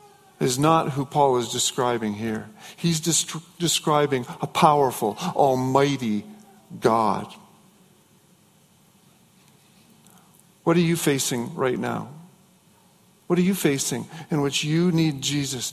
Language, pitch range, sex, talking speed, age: English, 135-185 Hz, male, 110 wpm, 50-69